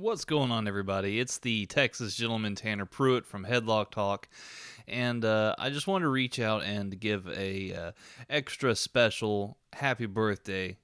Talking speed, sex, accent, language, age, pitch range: 160 wpm, male, American, English, 20-39, 95-110 Hz